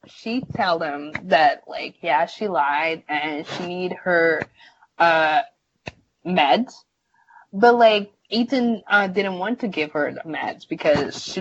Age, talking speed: 20-39, 140 wpm